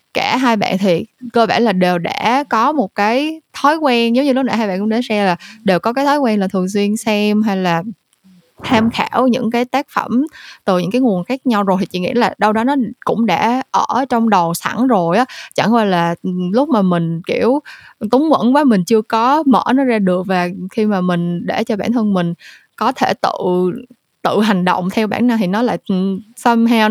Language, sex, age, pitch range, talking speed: Vietnamese, female, 20-39, 185-245 Hz, 225 wpm